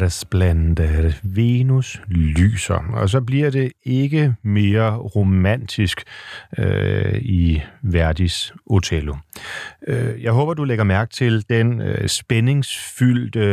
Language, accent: Danish, native